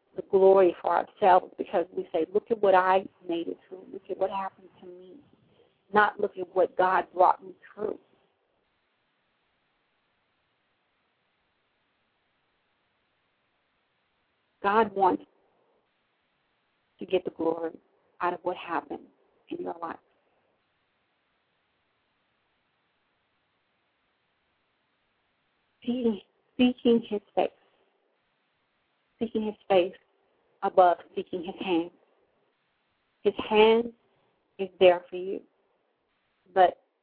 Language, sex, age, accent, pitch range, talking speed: English, female, 40-59, American, 180-225 Hz, 95 wpm